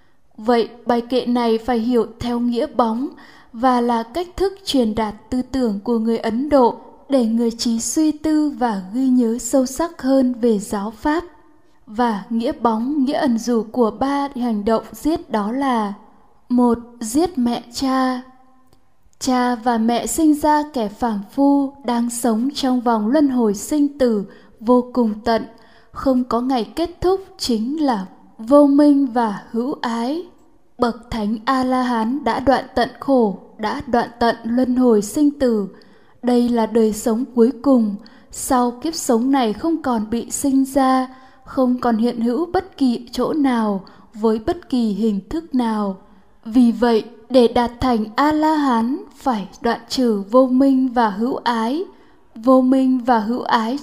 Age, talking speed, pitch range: 10-29, 160 wpm, 230-275 Hz